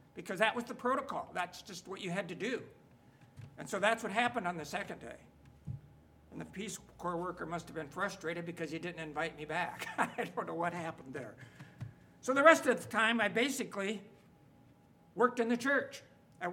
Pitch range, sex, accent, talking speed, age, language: 165-230 Hz, male, American, 200 wpm, 60-79, English